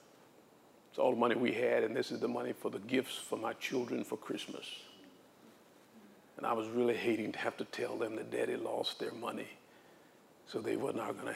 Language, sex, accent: English, male, American